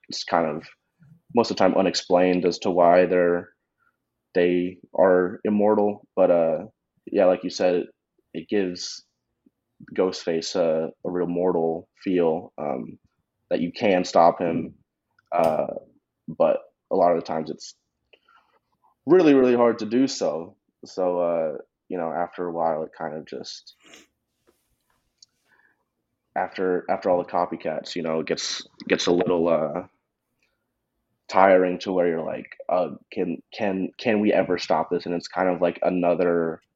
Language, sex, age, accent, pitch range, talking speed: English, male, 20-39, American, 85-95 Hz, 150 wpm